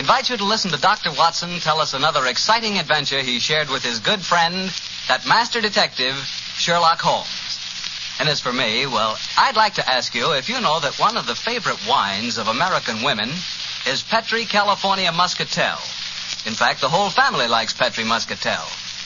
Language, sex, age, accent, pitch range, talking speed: English, male, 60-79, American, 120-175 Hz, 180 wpm